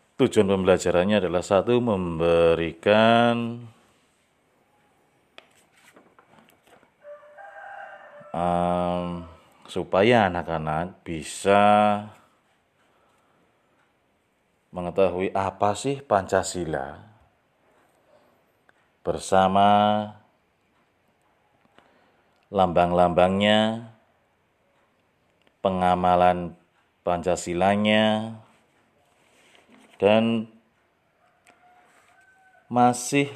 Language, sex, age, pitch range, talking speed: Indonesian, male, 30-49, 95-120 Hz, 35 wpm